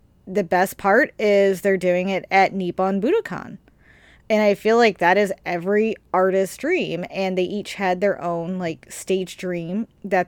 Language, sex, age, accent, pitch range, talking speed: English, female, 20-39, American, 175-205 Hz, 170 wpm